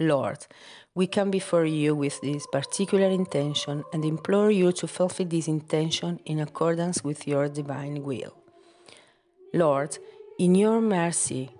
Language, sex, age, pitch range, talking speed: English, female, 40-59, 155-200 Hz, 135 wpm